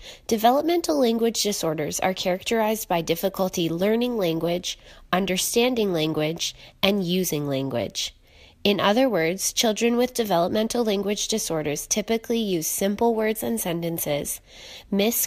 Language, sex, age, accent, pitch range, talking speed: English, female, 20-39, American, 165-210 Hz, 115 wpm